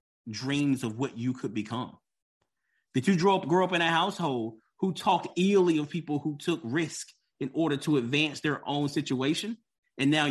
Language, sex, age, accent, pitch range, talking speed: English, male, 30-49, American, 130-175 Hz, 175 wpm